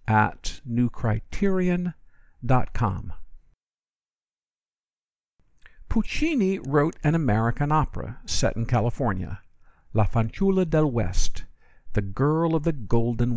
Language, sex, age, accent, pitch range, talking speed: English, male, 50-69, American, 110-170 Hz, 85 wpm